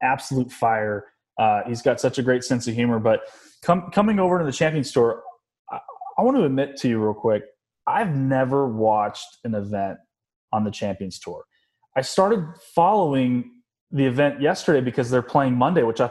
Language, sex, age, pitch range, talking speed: English, male, 20-39, 110-135 Hz, 185 wpm